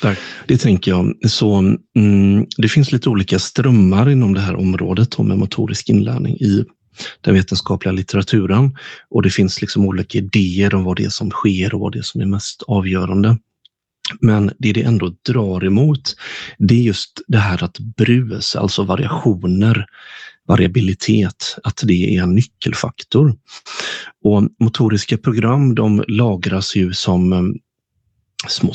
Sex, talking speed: male, 145 wpm